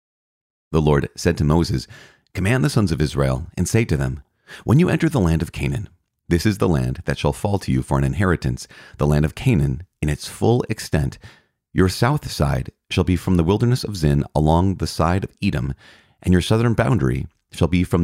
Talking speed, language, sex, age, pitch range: 210 wpm, English, male, 30-49, 75-100 Hz